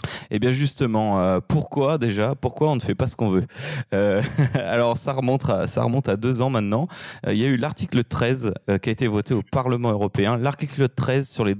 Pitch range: 105-130 Hz